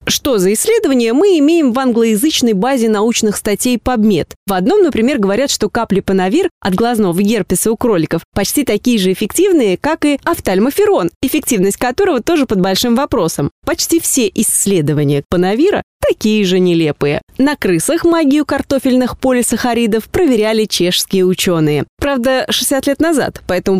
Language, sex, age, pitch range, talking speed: Russian, female, 20-39, 195-275 Hz, 140 wpm